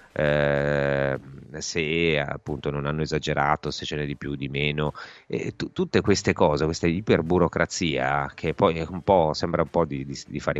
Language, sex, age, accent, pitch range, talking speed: Italian, male, 30-49, native, 75-90 Hz, 175 wpm